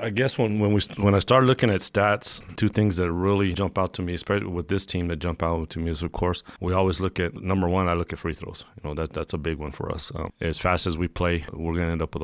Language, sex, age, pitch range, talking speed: English, male, 30-49, 85-95 Hz, 305 wpm